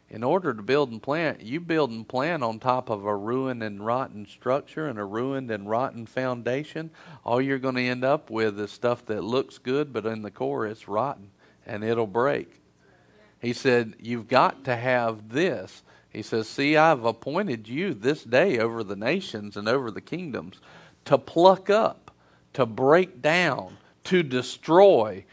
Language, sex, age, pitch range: English, male, 40-59, 110-145 Hz